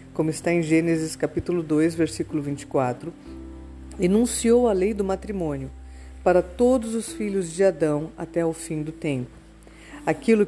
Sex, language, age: female, Portuguese, 50-69